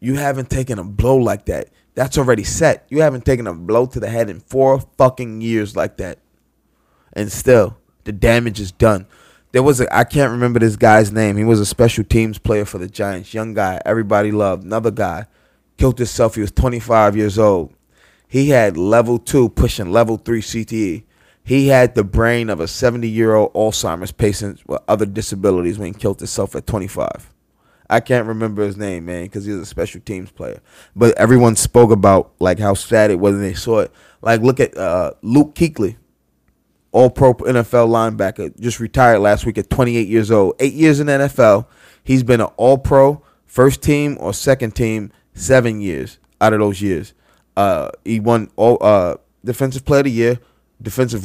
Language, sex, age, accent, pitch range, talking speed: English, male, 20-39, American, 105-125 Hz, 190 wpm